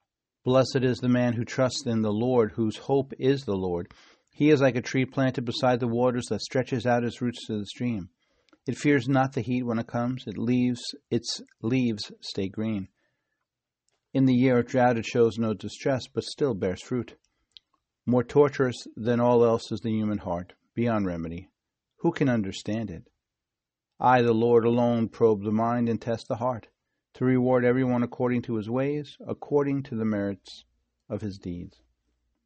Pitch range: 105-130 Hz